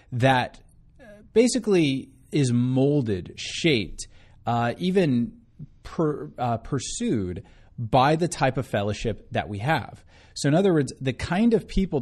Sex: male